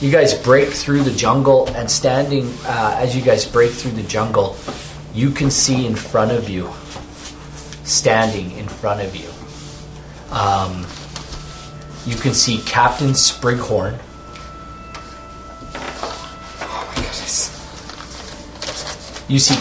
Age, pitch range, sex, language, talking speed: 30-49, 110-140 Hz, male, English, 120 wpm